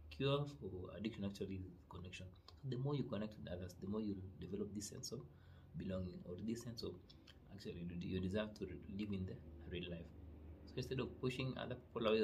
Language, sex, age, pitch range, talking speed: English, male, 30-49, 90-105 Hz, 195 wpm